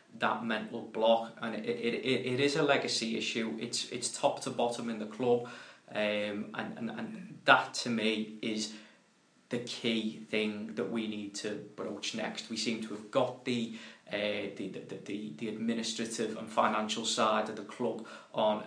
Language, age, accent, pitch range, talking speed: English, 20-39, British, 110-120 Hz, 180 wpm